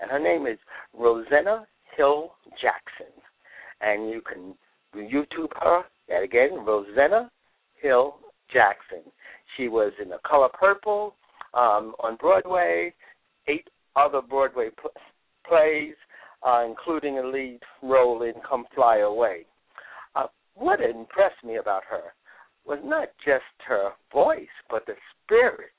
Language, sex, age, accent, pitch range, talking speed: English, male, 60-79, American, 115-180 Hz, 125 wpm